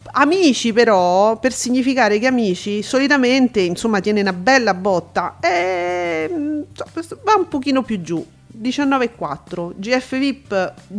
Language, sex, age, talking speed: Italian, female, 40-59, 105 wpm